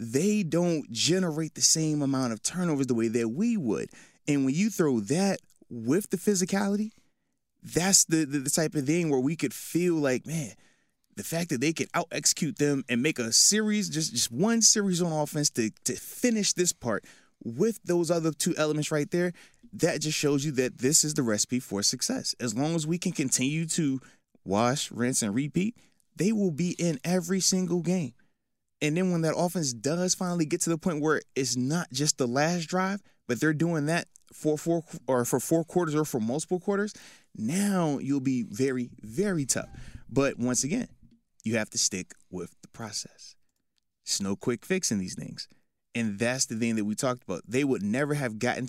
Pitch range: 120-175 Hz